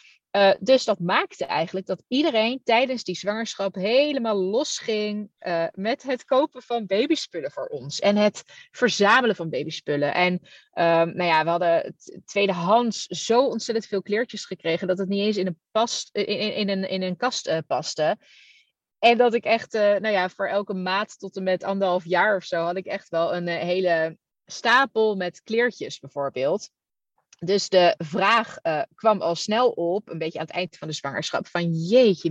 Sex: female